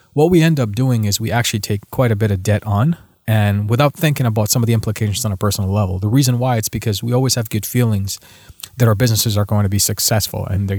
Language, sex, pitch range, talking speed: English, male, 100-120 Hz, 260 wpm